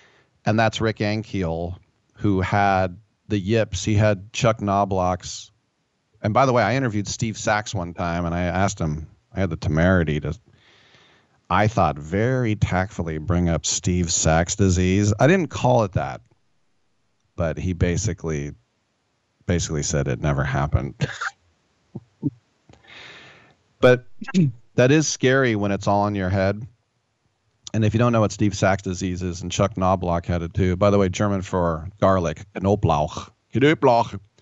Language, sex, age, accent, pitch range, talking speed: English, male, 40-59, American, 95-115 Hz, 150 wpm